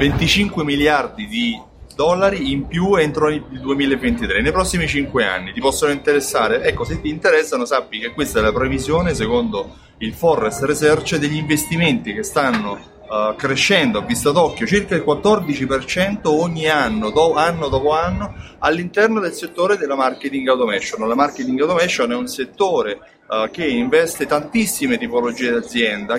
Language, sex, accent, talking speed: Italian, male, native, 145 wpm